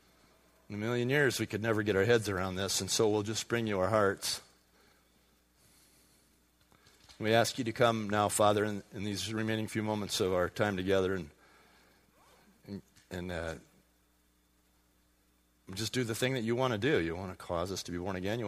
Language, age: English, 40-59